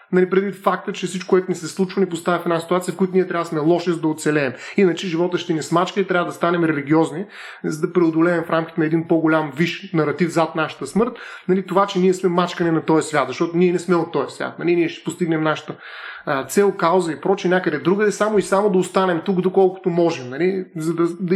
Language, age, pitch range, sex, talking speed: Bulgarian, 30-49, 165-195 Hz, male, 230 wpm